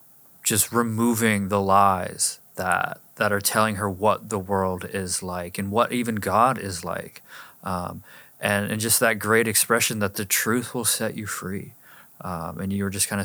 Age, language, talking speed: 30-49, English, 180 wpm